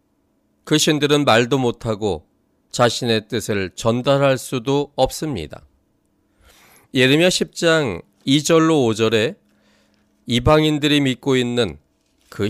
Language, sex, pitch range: Korean, male, 110-145 Hz